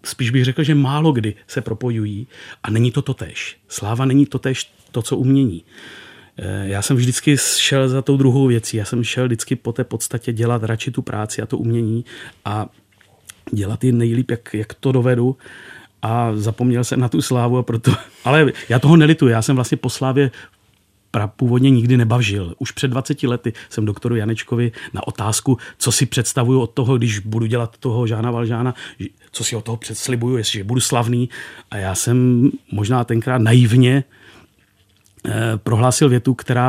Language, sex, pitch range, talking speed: Czech, male, 110-130 Hz, 170 wpm